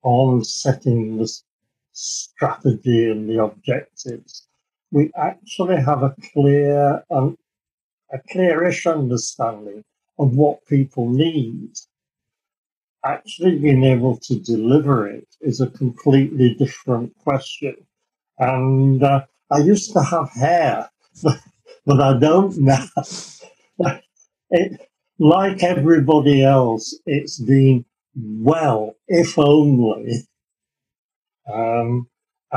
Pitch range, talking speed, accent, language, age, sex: 125-155 Hz, 100 wpm, British, English, 60-79, male